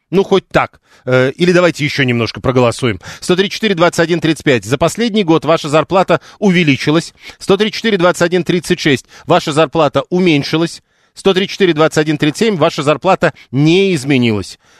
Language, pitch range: Russian, 130-175 Hz